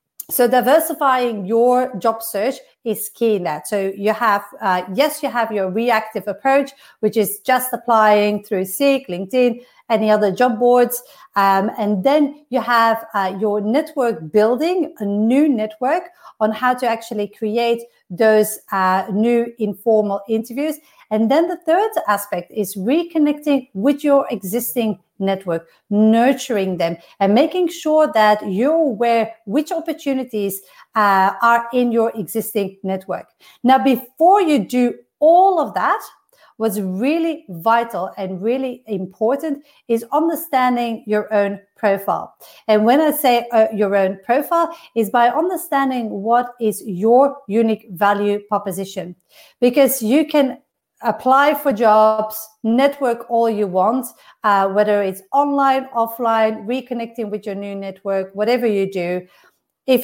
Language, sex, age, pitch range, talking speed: English, female, 40-59, 210-270 Hz, 135 wpm